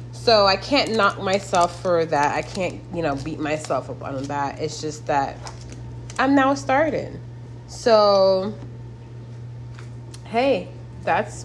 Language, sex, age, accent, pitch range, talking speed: English, female, 20-39, American, 120-160 Hz, 130 wpm